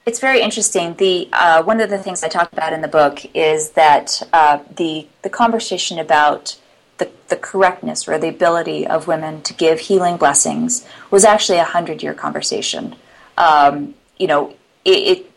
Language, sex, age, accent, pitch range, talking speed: English, female, 30-49, American, 150-180 Hz, 170 wpm